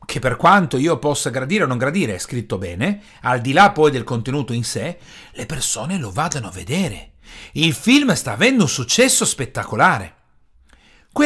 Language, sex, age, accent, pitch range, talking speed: Italian, male, 40-59, native, 140-220 Hz, 180 wpm